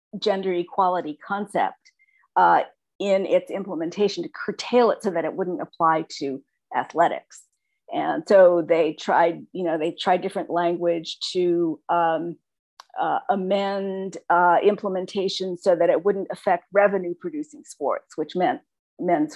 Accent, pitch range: American, 170-205 Hz